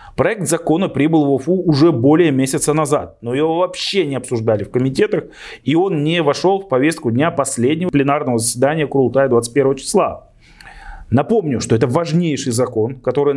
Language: Russian